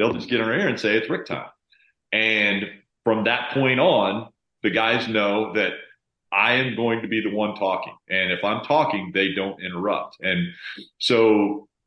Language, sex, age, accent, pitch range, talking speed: English, male, 40-59, American, 95-120 Hz, 185 wpm